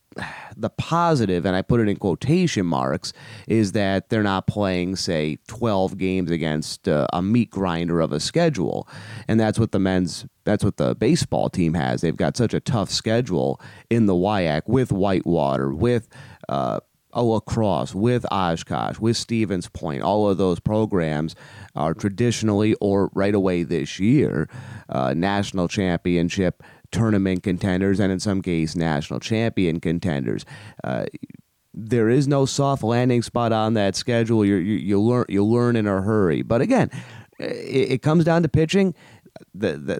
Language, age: English, 30-49